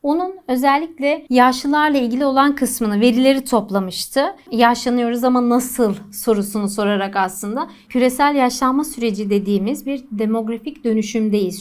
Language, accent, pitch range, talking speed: Turkish, native, 215-270 Hz, 110 wpm